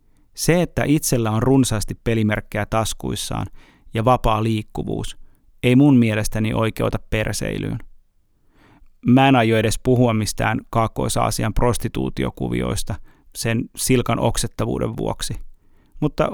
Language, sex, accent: Finnish, male, native